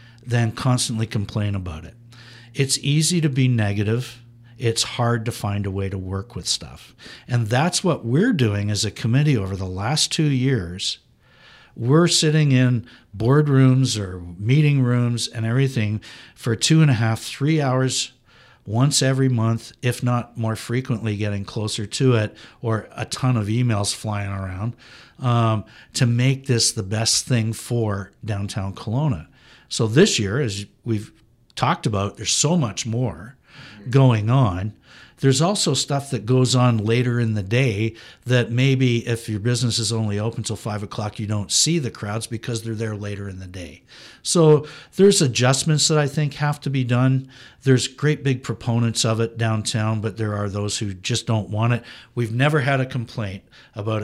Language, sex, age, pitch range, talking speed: English, male, 60-79, 110-130 Hz, 170 wpm